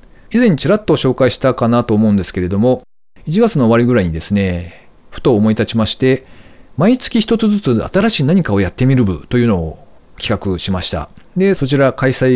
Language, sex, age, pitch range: Japanese, male, 40-59, 95-130 Hz